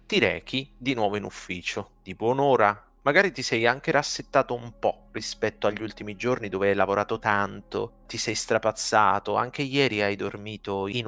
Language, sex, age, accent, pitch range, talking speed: Italian, male, 30-49, native, 95-125 Hz, 170 wpm